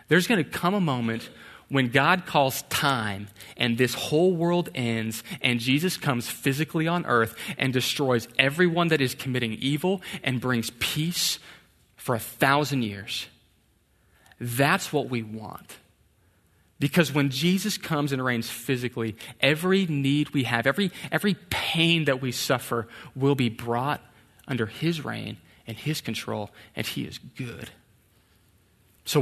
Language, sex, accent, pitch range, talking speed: English, male, American, 115-160 Hz, 145 wpm